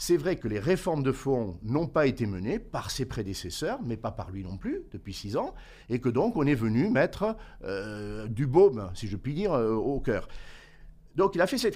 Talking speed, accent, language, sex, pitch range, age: 230 wpm, French, French, male, 105-150 Hz, 50-69